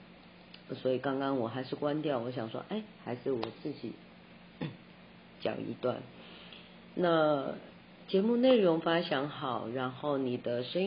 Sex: female